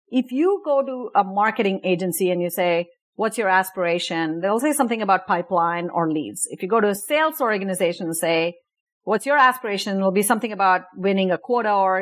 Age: 40-59